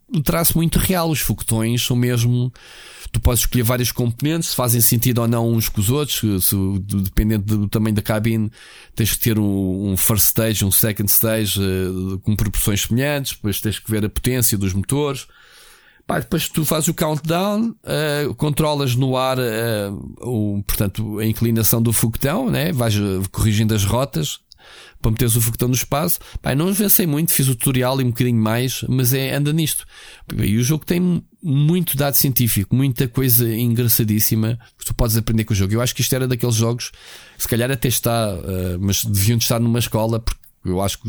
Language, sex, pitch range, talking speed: Portuguese, male, 105-130 Hz, 180 wpm